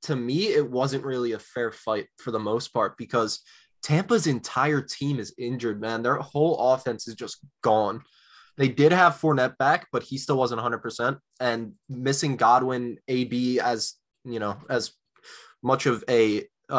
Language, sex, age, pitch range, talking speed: English, male, 20-39, 120-145 Hz, 175 wpm